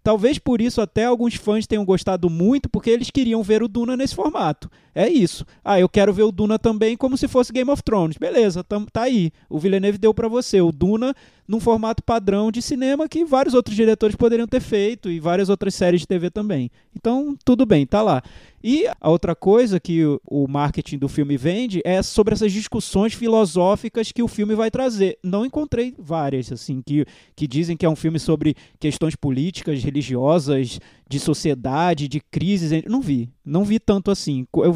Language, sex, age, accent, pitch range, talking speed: Portuguese, male, 20-39, Brazilian, 165-230 Hz, 195 wpm